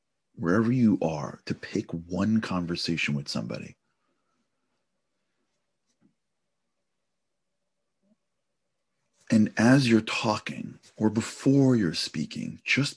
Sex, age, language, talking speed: male, 40-59, English, 85 wpm